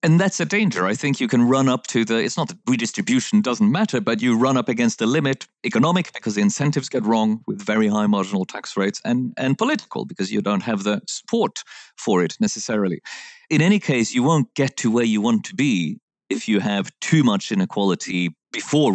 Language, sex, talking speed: English, male, 215 wpm